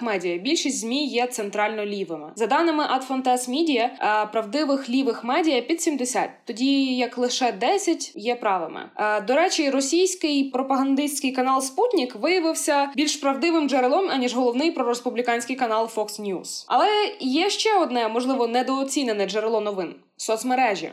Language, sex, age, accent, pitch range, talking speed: Ukrainian, female, 20-39, native, 225-300 Hz, 130 wpm